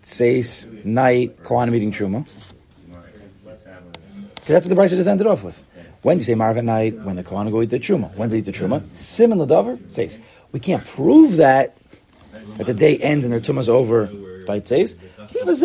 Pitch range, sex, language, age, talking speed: 100-155 Hz, male, English, 30-49, 185 wpm